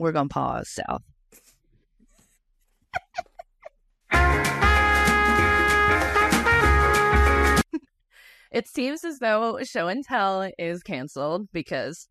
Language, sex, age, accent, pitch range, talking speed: English, female, 20-39, American, 150-195 Hz, 75 wpm